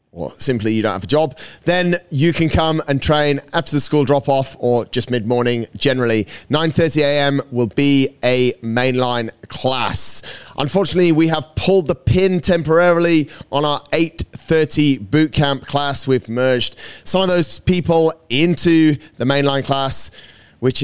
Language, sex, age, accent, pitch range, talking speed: English, male, 30-49, British, 115-155 Hz, 145 wpm